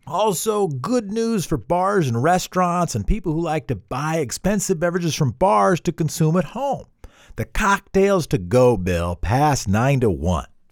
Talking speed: 170 wpm